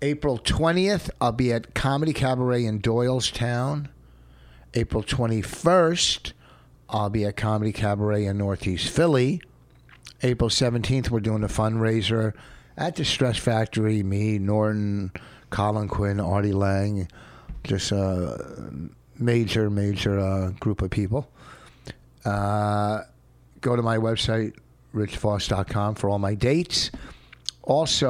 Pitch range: 100-125 Hz